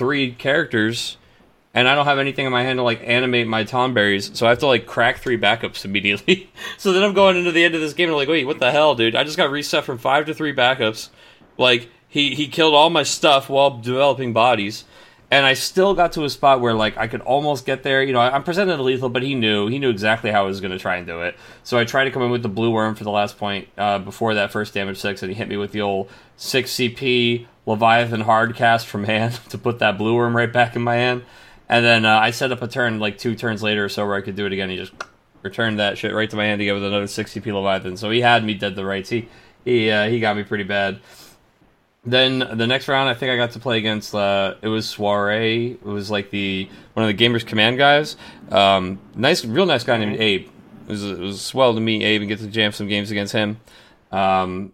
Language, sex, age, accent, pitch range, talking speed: English, male, 30-49, American, 105-130 Hz, 265 wpm